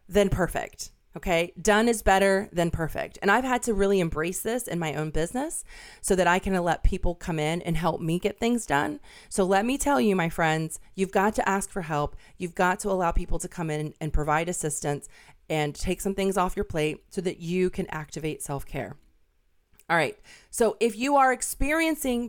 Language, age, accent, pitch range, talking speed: English, 30-49, American, 155-200 Hz, 205 wpm